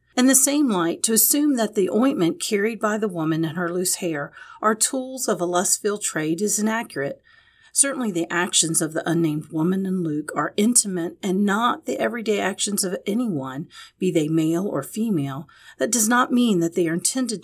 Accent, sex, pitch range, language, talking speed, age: American, female, 165-230 Hz, English, 195 wpm, 40-59